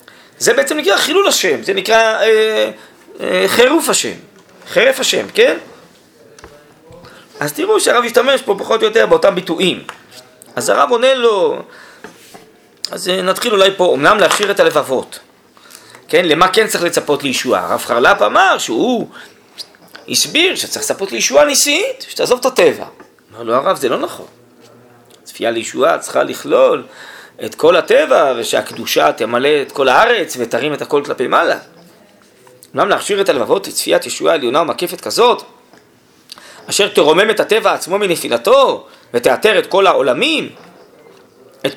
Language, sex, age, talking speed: Hebrew, male, 40-59, 145 wpm